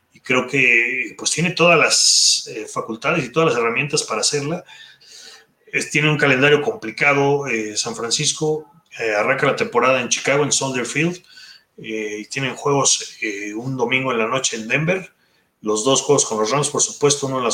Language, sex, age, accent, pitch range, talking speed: Spanish, male, 30-49, Mexican, 115-150 Hz, 185 wpm